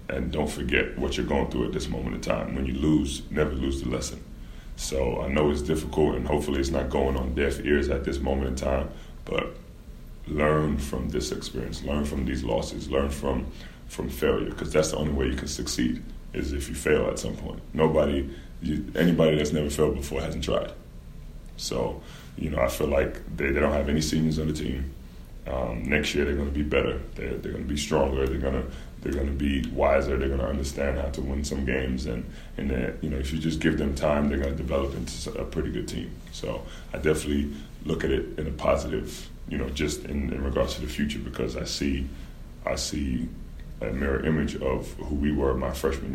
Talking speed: 225 wpm